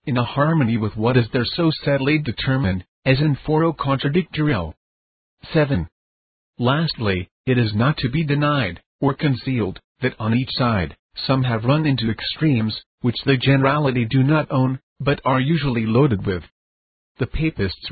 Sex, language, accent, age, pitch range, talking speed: male, English, American, 40-59, 110-140 Hz, 155 wpm